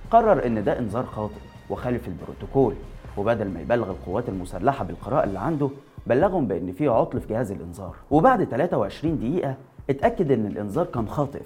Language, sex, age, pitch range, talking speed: Arabic, male, 30-49, 105-140 Hz, 155 wpm